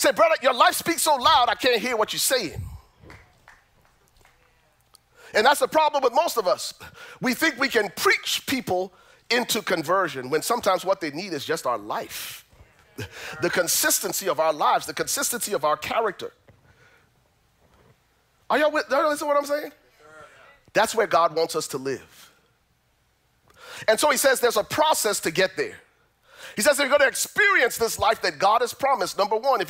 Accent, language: American, English